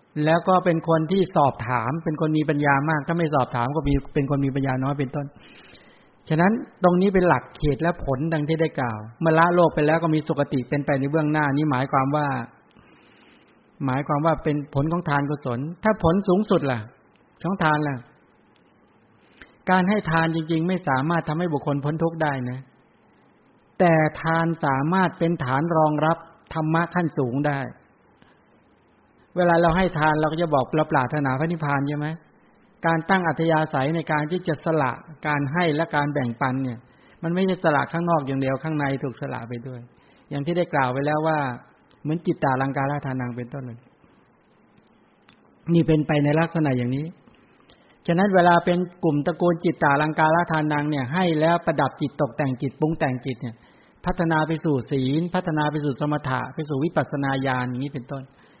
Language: English